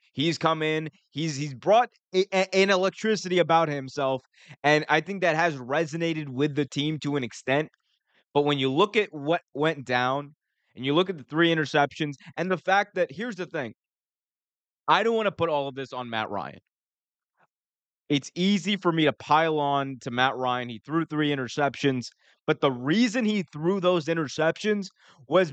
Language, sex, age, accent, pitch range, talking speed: English, male, 20-39, American, 145-190 Hz, 180 wpm